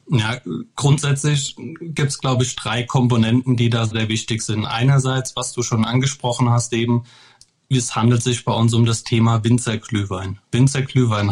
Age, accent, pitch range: 30-49, German, 115-130 Hz